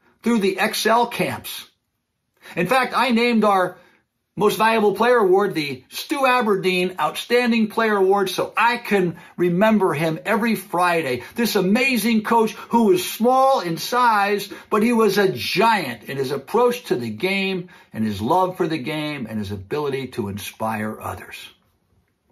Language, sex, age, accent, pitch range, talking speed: English, male, 50-69, American, 170-235 Hz, 155 wpm